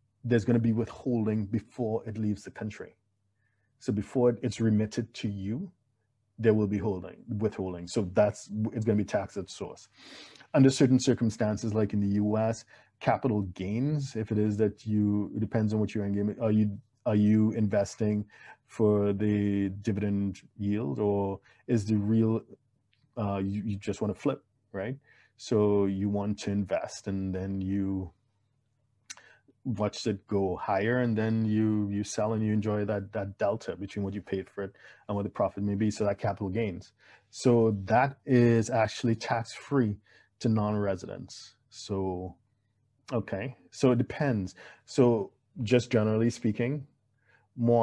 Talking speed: 155 wpm